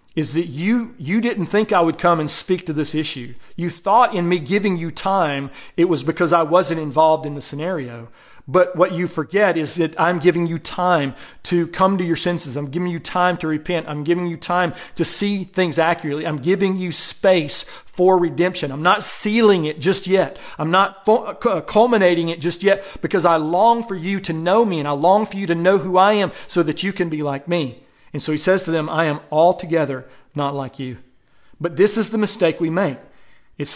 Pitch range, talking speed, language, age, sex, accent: 155-185 Hz, 215 wpm, English, 40-59, male, American